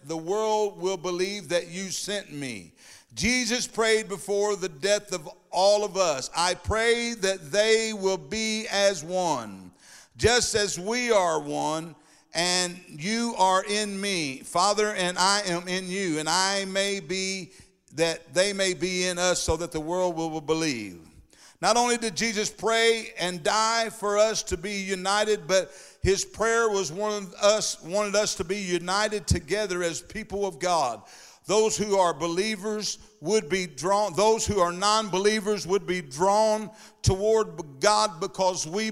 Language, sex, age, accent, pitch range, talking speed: English, male, 50-69, American, 180-215 Hz, 160 wpm